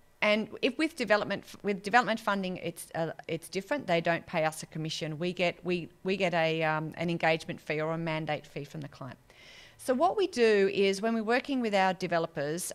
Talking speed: 210 wpm